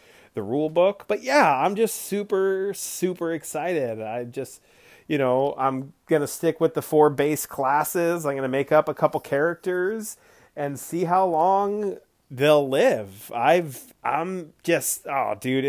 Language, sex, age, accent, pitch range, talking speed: English, male, 30-49, American, 125-165 Hz, 155 wpm